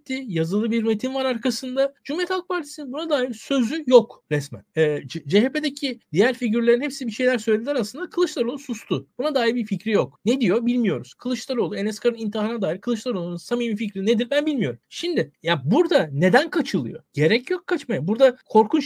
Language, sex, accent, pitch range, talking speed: Turkish, male, native, 210-275 Hz, 170 wpm